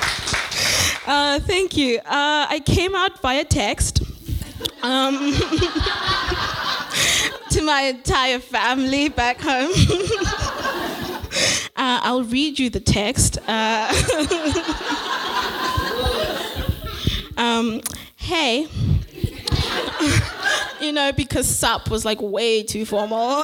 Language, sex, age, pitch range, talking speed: English, female, 20-39, 245-325 Hz, 85 wpm